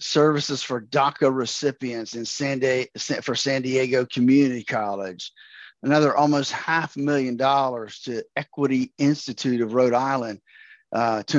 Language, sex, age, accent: English, male, 50-69, American